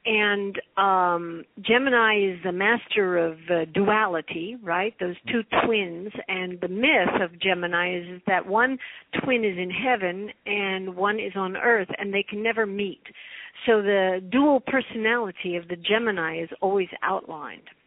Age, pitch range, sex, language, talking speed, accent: 60-79, 190-235 Hz, female, English, 150 wpm, American